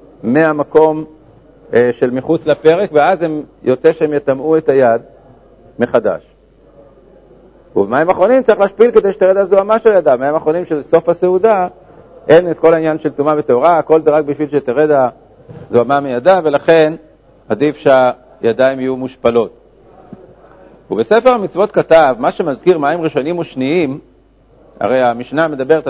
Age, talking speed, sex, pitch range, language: 50-69, 130 wpm, male, 135-175 Hz, Hebrew